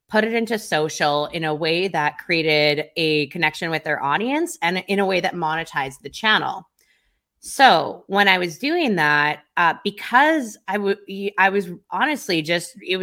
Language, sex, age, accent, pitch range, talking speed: English, female, 20-39, American, 160-215 Hz, 160 wpm